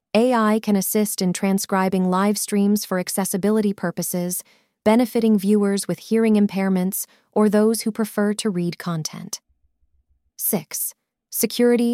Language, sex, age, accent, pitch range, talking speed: English, female, 30-49, American, 180-220 Hz, 120 wpm